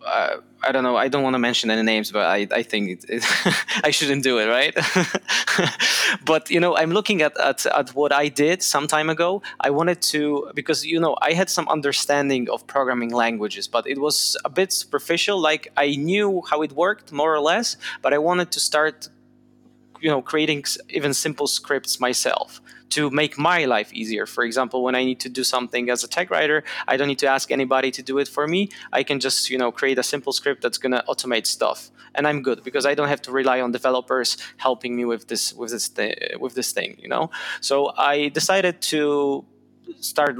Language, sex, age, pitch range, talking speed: English, male, 20-39, 125-150 Hz, 210 wpm